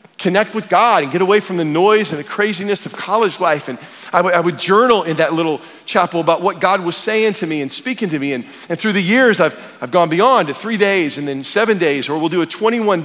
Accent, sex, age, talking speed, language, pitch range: American, male, 40-59, 260 wpm, English, 175-220 Hz